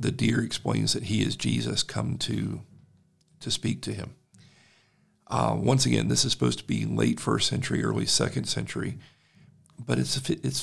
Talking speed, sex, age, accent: 170 wpm, male, 50-69, American